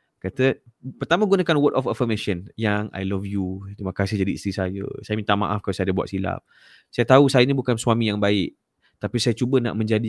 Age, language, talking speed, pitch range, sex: 20-39, English, 215 wpm, 110-180 Hz, male